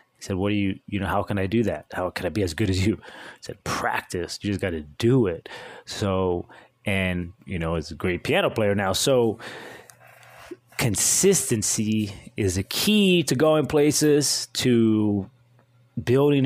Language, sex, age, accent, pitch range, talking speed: English, male, 30-49, American, 100-120 Hz, 180 wpm